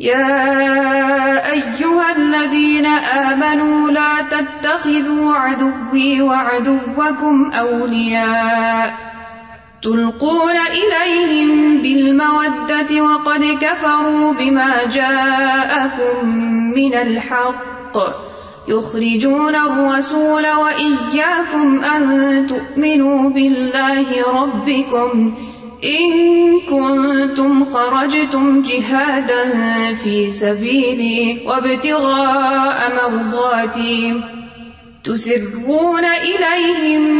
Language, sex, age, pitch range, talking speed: Urdu, female, 20-39, 240-300 Hz, 40 wpm